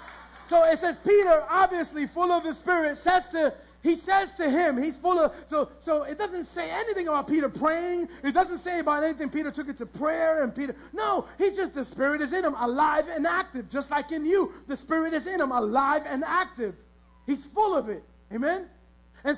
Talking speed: 210 wpm